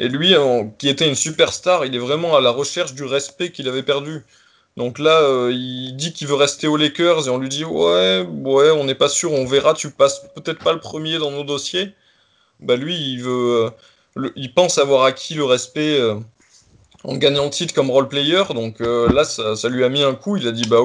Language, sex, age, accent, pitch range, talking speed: French, male, 20-39, French, 120-145 Hz, 235 wpm